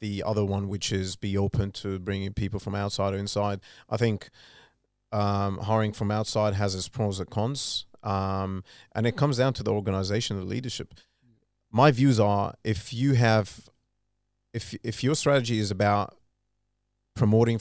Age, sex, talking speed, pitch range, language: 30-49, male, 165 wpm, 100-120 Hz, English